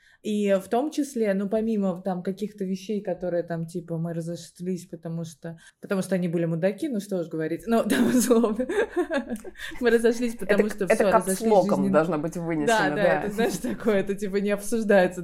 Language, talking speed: Russian, 180 wpm